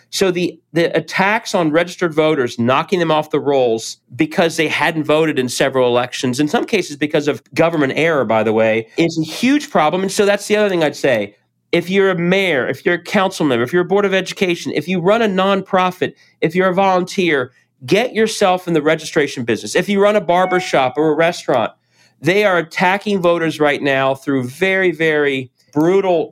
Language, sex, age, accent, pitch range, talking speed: English, male, 40-59, American, 150-195 Hz, 205 wpm